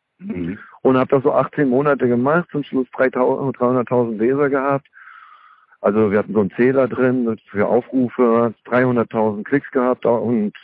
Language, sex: German, male